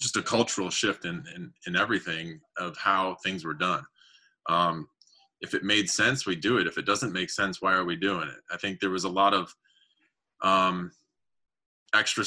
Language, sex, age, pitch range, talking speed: English, male, 20-39, 90-125 Hz, 195 wpm